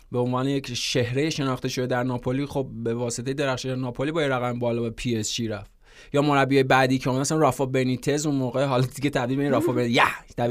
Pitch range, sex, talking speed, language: 130-160 Hz, male, 210 wpm, Persian